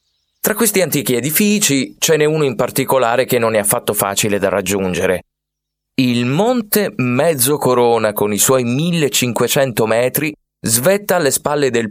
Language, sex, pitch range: Italian, male, 110-155 Hz